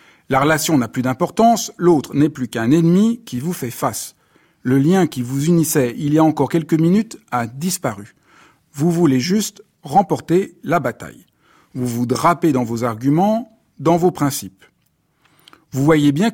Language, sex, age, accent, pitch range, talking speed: French, male, 50-69, French, 125-165 Hz, 165 wpm